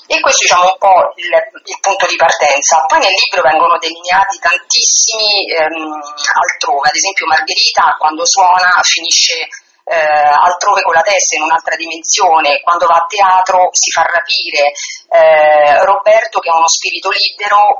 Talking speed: 155 wpm